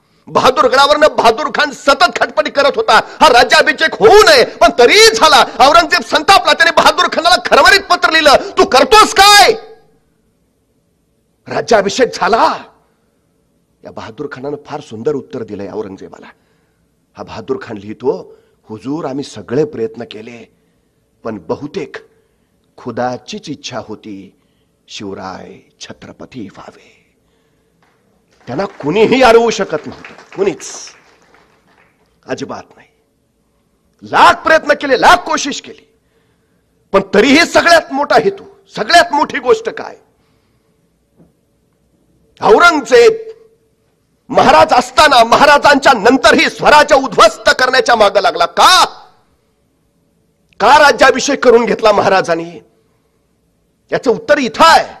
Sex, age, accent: male, 50-69, native